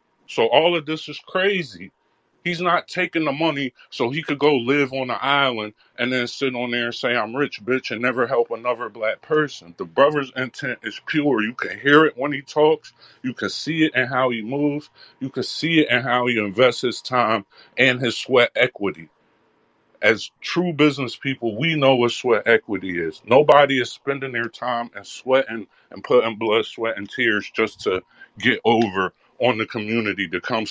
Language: English